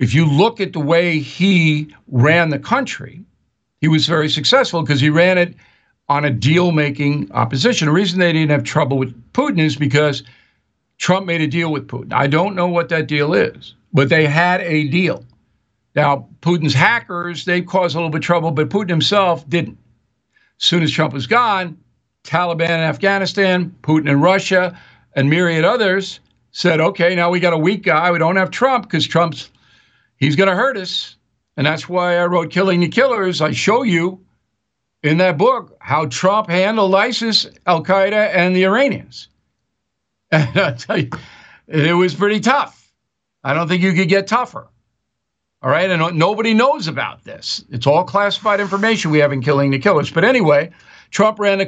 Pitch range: 145-185 Hz